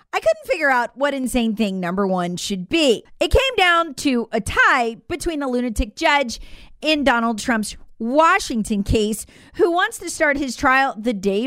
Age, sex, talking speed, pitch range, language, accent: 40-59, female, 180 wpm, 210-300 Hz, English, American